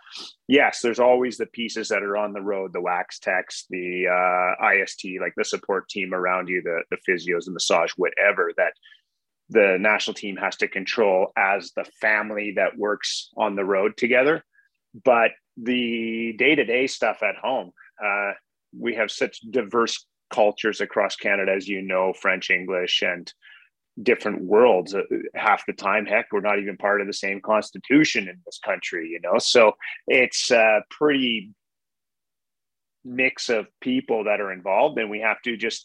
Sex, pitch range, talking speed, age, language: male, 100-130 Hz, 170 wpm, 30-49, English